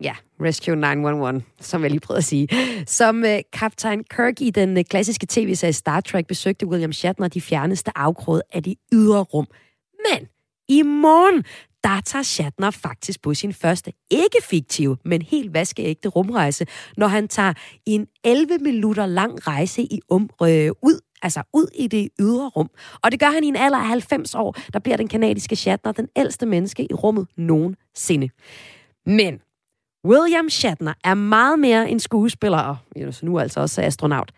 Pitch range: 170-240 Hz